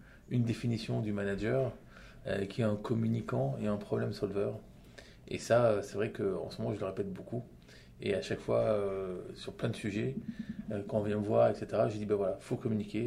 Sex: male